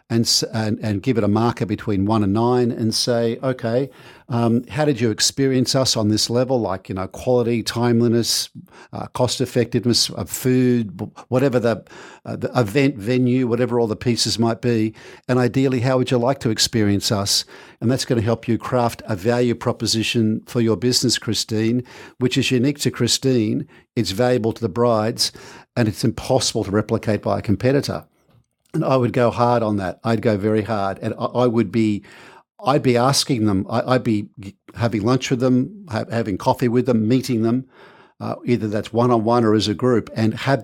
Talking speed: 185 wpm